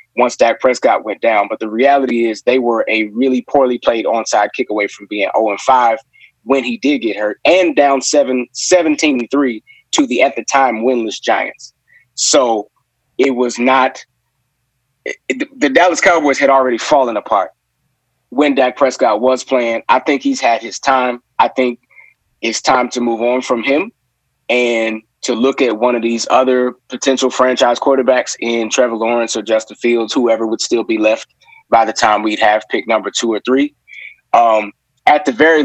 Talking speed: 175 wpm